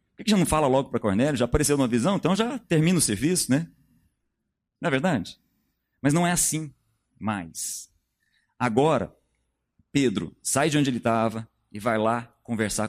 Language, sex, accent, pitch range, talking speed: Portuguese, male, Brazilian, 110-140 Hz, 170 wpm